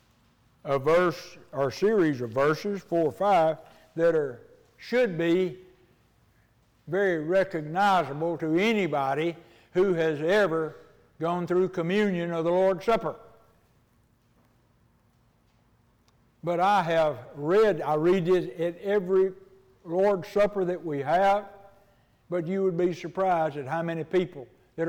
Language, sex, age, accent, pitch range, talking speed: English, male, 60-79, American, 120-190 Hz, 125 wpm